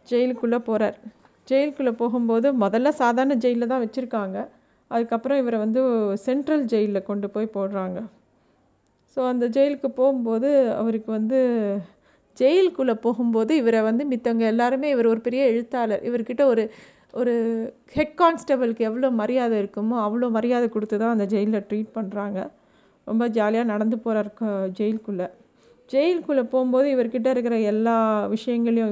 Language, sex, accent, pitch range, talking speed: Tamil, female, native, 210-250 Hz, 120 wpm